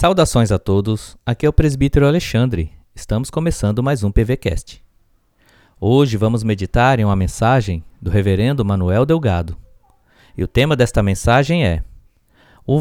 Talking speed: 140 wpm